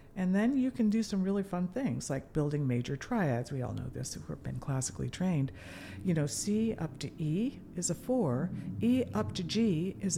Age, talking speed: 50-69, 210 wpm